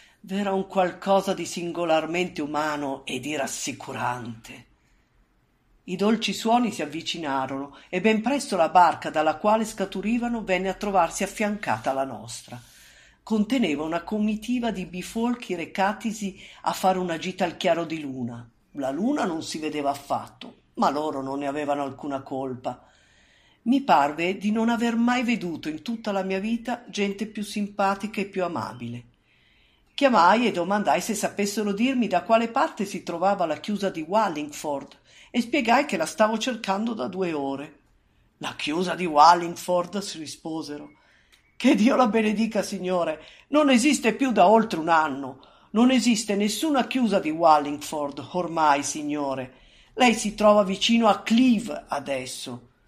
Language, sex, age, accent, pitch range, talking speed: Italian, female, 50-69, native, 155-225 Hz, 150 wpm